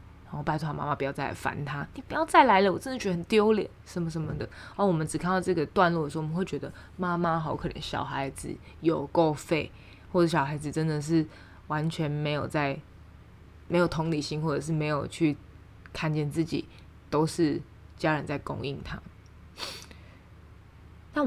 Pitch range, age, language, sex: 130-170 Hz, 20-39, Chinese, female